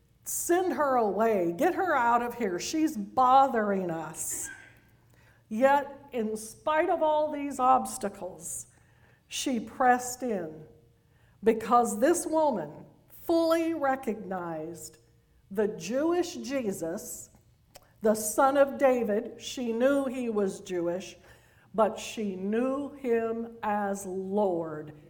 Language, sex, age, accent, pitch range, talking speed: English, female, 60-79, American, 180-255 Hz, 105 wpm